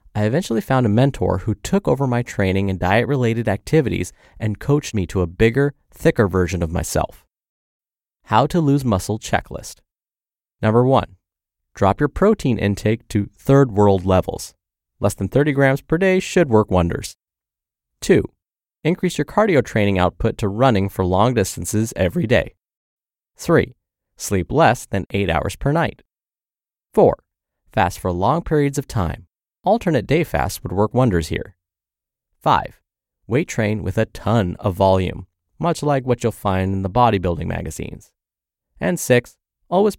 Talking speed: 155 wpm